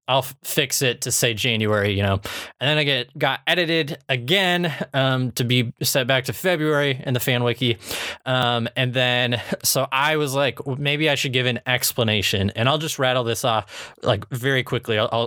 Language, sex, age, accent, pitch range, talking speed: English, male, 20-39, American, 115-140 Hz, 195 wpm